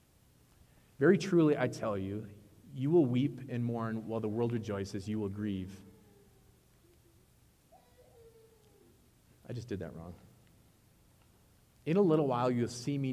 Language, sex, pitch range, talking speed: English, male, 105-135 Hz, 135 wpm